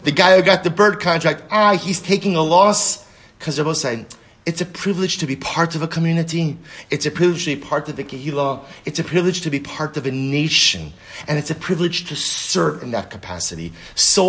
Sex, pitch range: male, 145-185 Hz